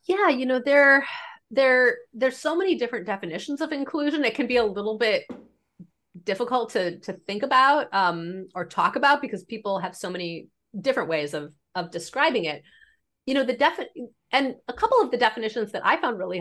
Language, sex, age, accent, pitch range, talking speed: English, female, 30-49, American, 185-265 Hz, 190 wpm